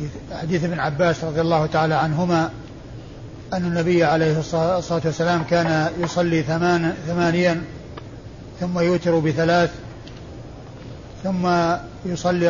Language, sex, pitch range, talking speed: Arabic, male, 125-180 Hz, 100 wpm